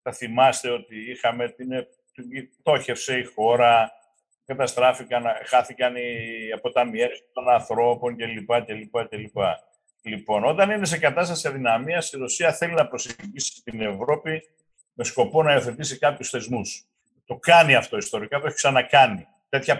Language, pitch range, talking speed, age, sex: Greek, 120-165 Hz, 125 wpm, 50-69, male